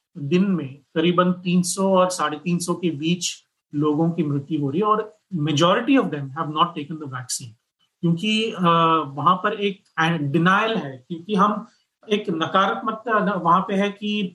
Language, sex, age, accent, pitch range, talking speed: Hindi, male, 30-49, native, 160-195 Hz, 145 wpm